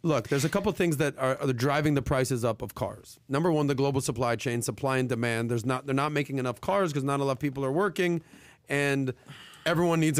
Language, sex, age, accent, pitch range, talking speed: English, male, 40-59, American, 130-155 Hz, 245 wpm